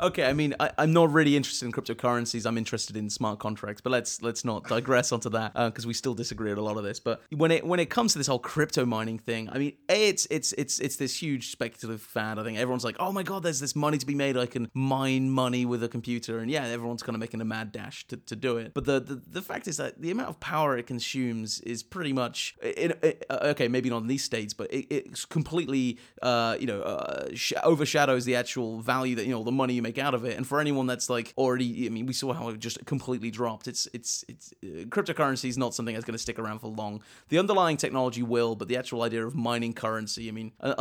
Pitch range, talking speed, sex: 115-140 Hz, 265 wpm, male